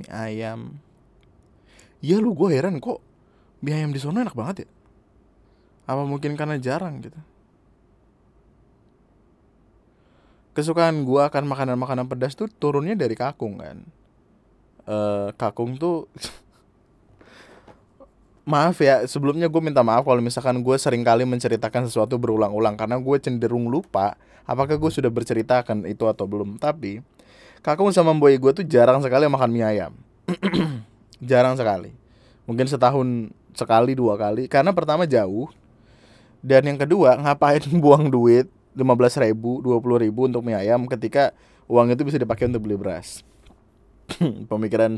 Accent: native